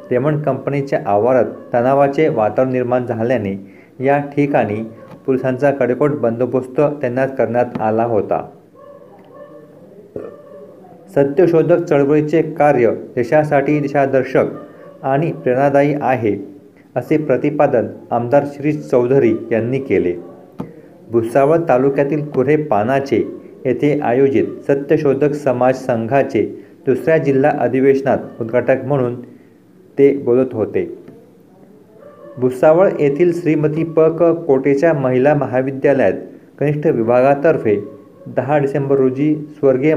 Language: Marathi